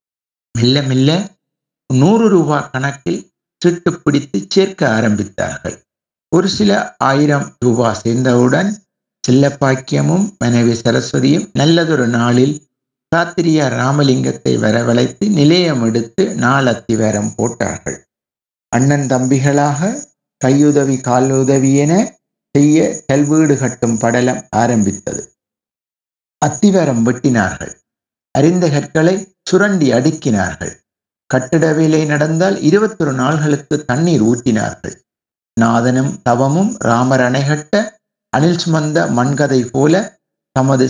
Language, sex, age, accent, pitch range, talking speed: Tamil, male, 60-79, native, 125-170 Hz, 80 wpm